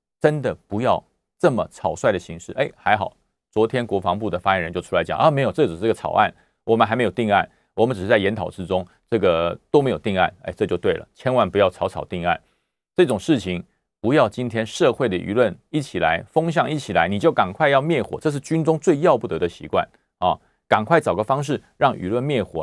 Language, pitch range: Chinese, 100-155 Hz